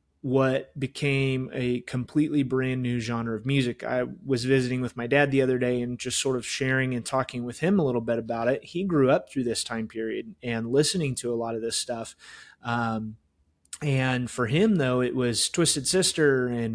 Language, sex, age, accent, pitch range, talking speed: English, male, 30-49, American, 120-140 Hz, 205 wpm